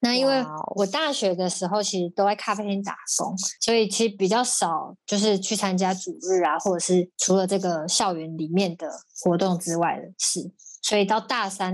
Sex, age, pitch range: female, 20-39, 185-220 Hz